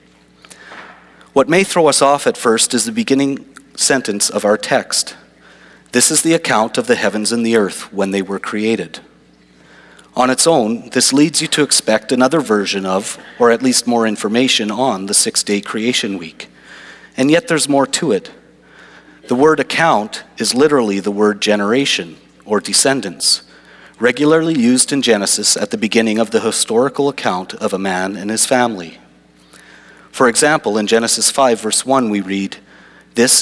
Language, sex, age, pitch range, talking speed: English, male, 40-59, 95-130 Hz, 165 wpm